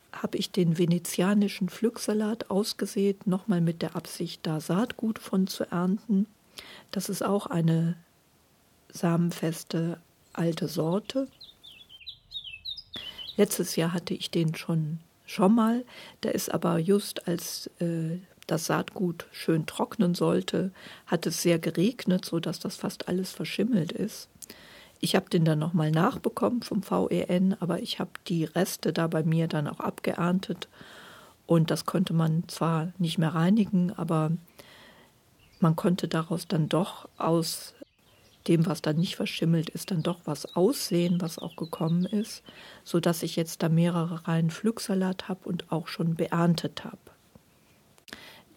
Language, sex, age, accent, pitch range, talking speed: German, female, 40-59, German, 165-195 Hz, 140 wpm